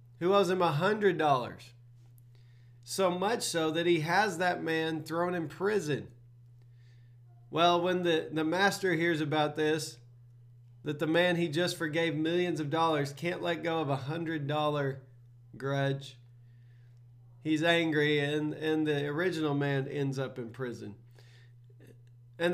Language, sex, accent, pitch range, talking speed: English, male, American, 120-165 Hz, 145 wpm